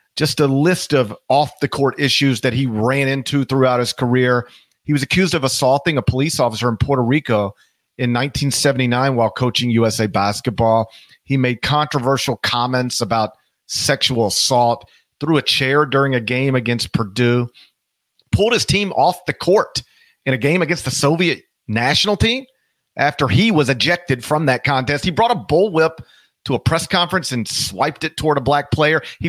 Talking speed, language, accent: 170 wpm, English, American